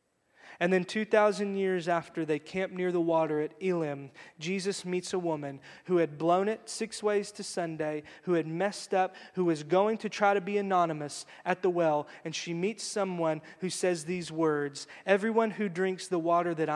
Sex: male